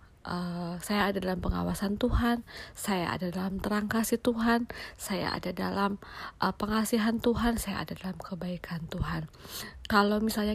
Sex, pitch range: female, 180-225 Hz